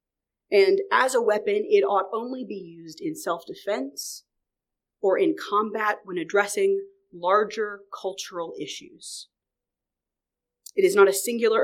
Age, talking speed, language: 30-49, 125 wpm, English